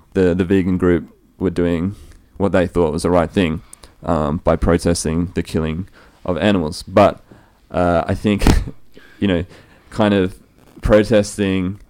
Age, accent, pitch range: 20-39, Australian, 85-100 Hz